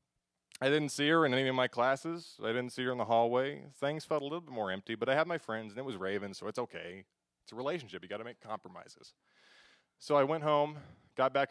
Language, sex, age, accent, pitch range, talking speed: English, male, 20-39, American, 115-145 Hz, 255 wpm